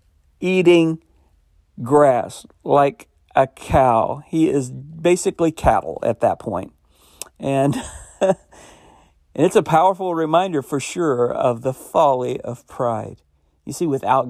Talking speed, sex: 120 wpm, male